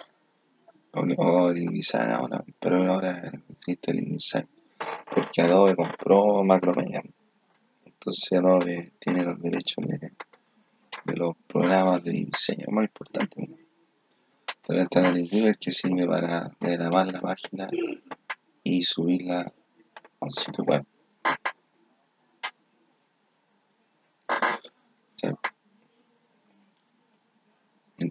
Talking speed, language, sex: 100 wpm, Spanish, male